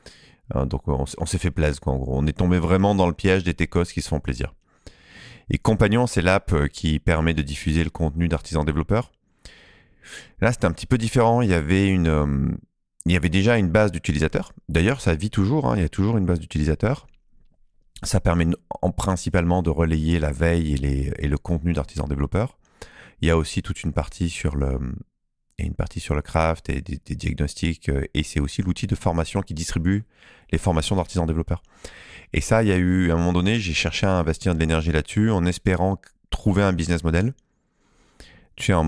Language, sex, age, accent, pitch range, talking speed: French, male, 30-49, French, 80-95 Hz, 210 wpm